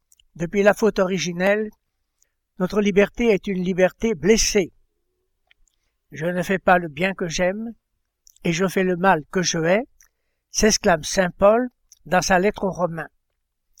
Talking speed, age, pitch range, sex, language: 150 wpm, 60-79, 175-220 Hz, male, French